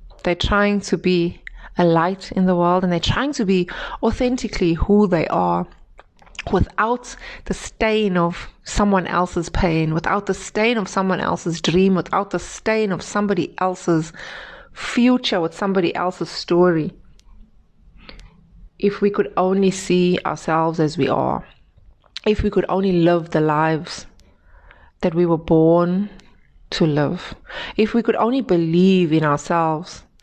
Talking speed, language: 145 wpm, English